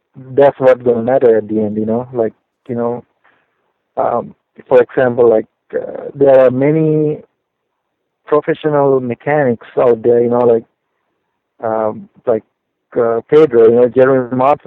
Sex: male